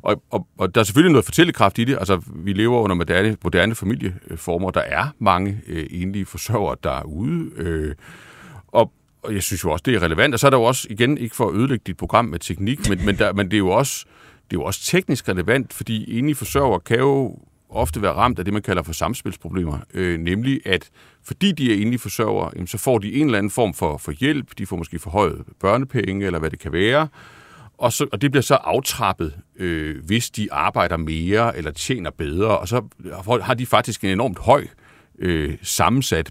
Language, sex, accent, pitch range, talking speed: Danish, male, native, 90-120 Hz, 215 wpm